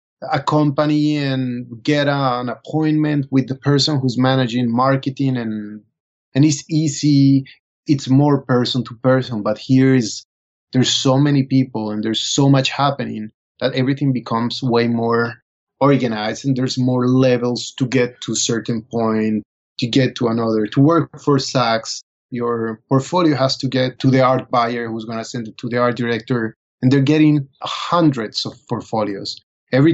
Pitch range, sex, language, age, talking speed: 120-150 Hz, male, English, 30-49, 165 wpm